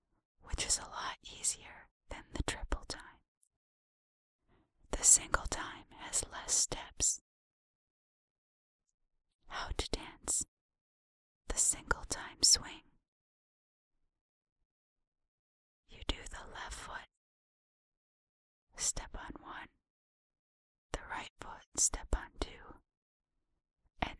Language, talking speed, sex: English, 90 wpm, male